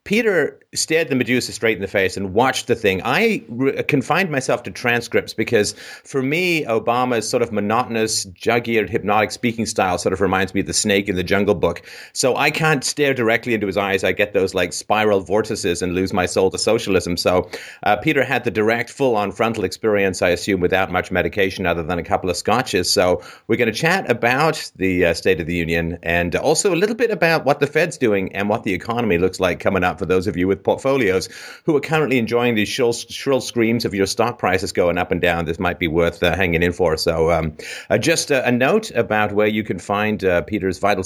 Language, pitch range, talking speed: English, 95-125 Hz, 225 wpm